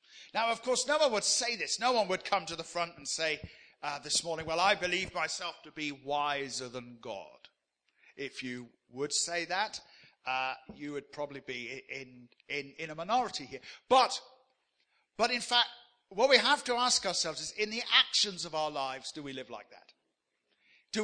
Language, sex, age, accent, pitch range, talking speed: English, male, 50-69, British, 150-225 Hz, 195 wpm